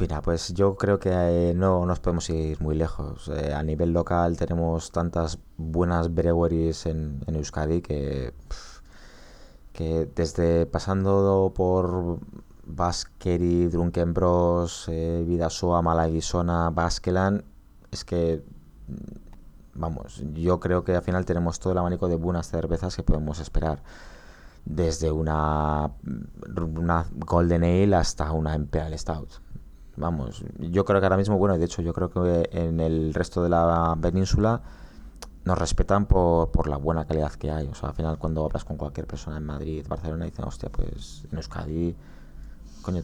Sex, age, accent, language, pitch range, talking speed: male, 20-39, Spanish, Spanish, 75-90 Hz, 150 wpm